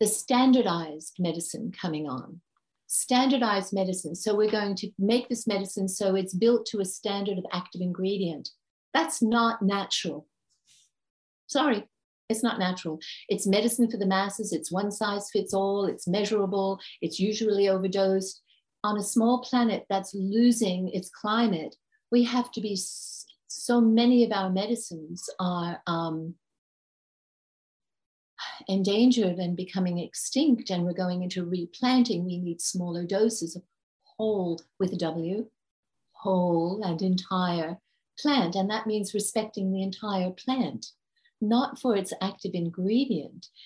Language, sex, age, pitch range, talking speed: English, female, 50-69, 180-230 Hz, 135 wpm